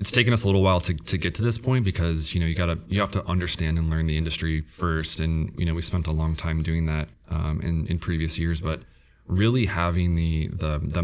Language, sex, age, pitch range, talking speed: English, male, 30-49, 80-90 Hz, 260 wpm